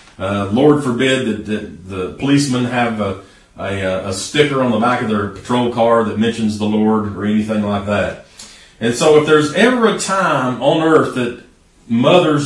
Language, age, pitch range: English, 40-59, 110-160 Hz